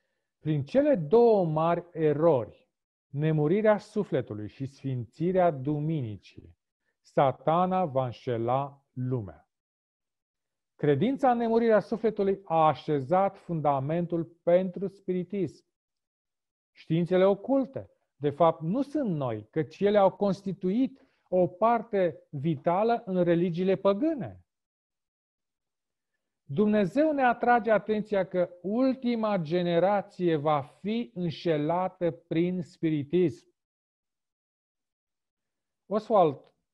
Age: 40-59